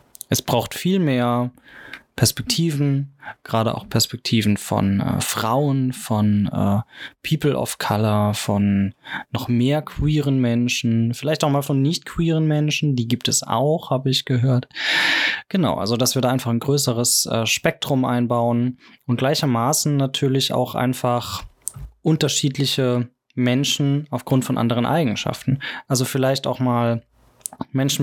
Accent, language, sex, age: German, German, male, 20-39